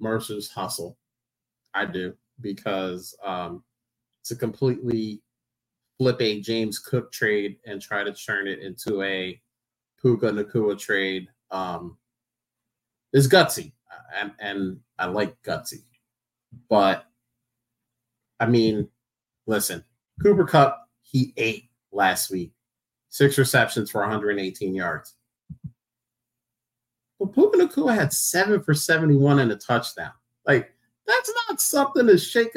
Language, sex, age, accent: English, male, 30-49, American